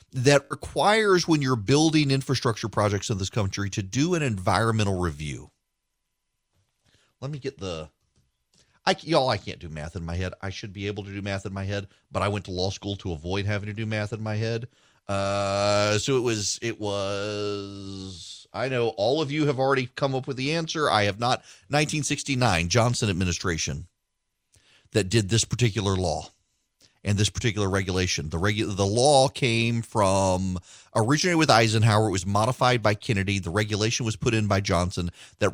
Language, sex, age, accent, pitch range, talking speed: English, male, 40-59, American, 95-125 Hz, 180 wpm